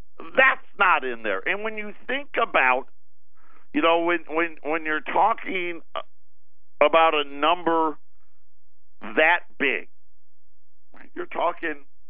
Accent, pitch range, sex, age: American, 140-180 Hz, male, 50-69